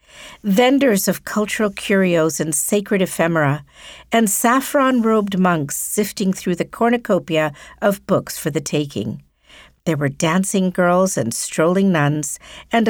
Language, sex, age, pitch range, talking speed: English, female, 60-79, 160-225 Hz, 125 wpm